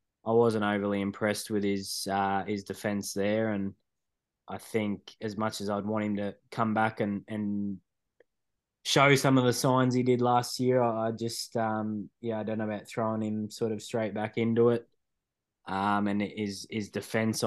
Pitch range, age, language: 100-110 Hz, 20-39, English